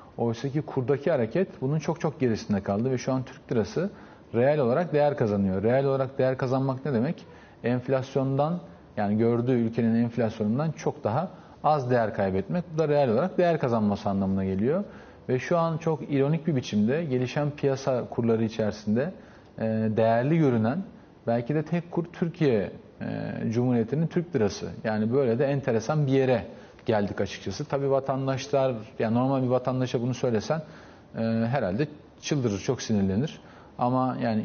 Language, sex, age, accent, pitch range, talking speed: Turkish, male, 40-59, native, 115-145 Hz, 150 wpm